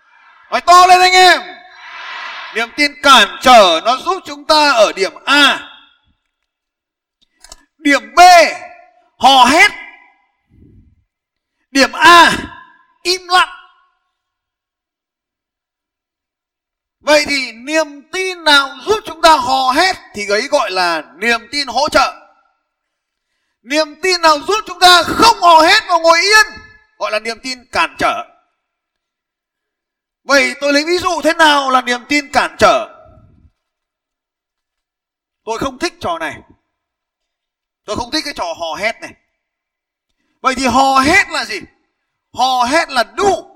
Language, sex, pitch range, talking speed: Vietnamese, male, 290-335 Hz, 130 wpm